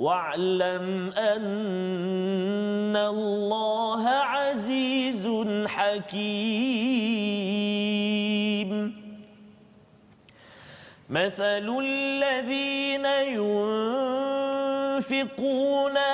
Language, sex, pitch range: Malayalam, male, 215-275 Hz